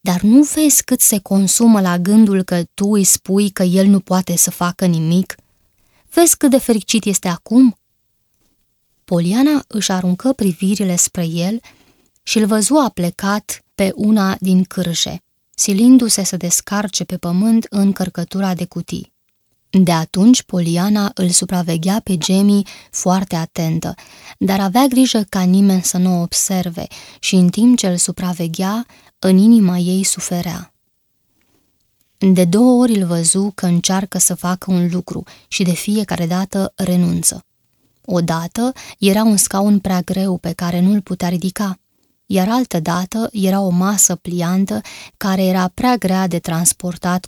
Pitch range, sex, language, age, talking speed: 175-200 Hz, female, Romanian, 20-39, 145 wpm